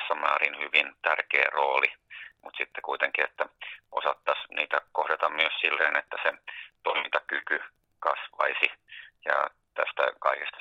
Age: 30-49